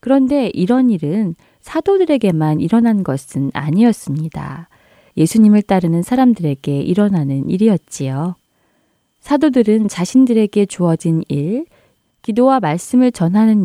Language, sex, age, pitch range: Korean, female, 20-39, 155-235 Hz